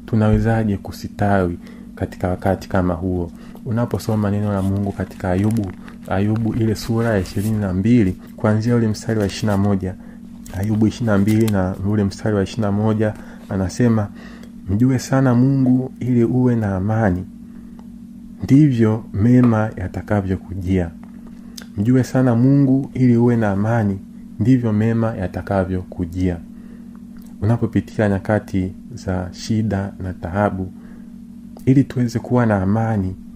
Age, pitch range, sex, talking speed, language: 40-59, 100-120 Hz, male, 110 wpm, Swahili